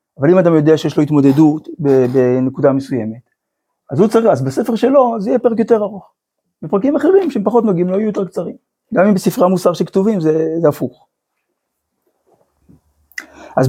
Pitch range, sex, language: 135-195 Hz, male, Hebrew